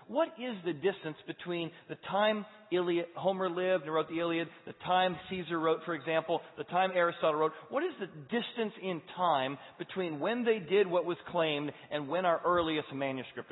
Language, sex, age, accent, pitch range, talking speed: English, male, 40-59, American, 140-185 Hz, 185 wpm